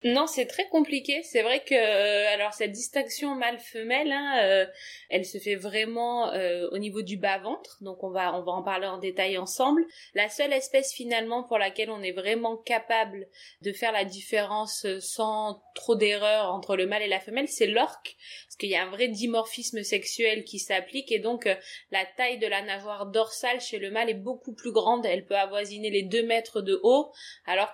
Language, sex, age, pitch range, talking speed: French, female, 20-39, 195-240 Hz, 195 wpm